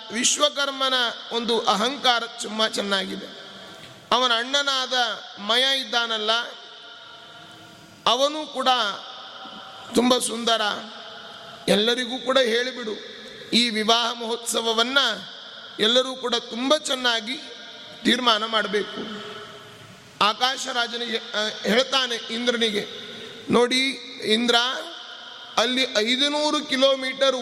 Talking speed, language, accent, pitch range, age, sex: 40 wpm, Kannada, native, 225-260 Hz, 30-49, male